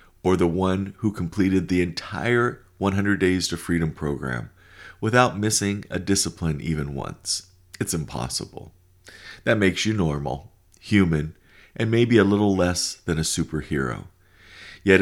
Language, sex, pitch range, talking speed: English, male, 85-100 Hz, 135 wpm